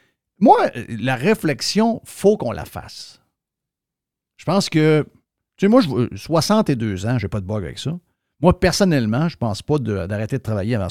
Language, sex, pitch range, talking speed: French, male, 110-150 Hz, 185 wpm